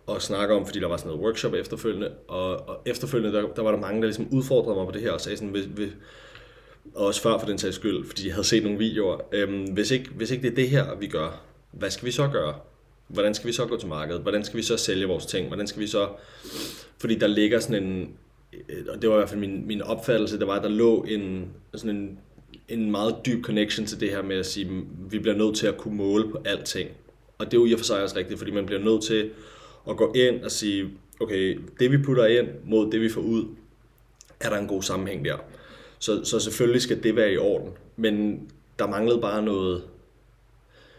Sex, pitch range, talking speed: male, 100-115 Hz, 240 wpm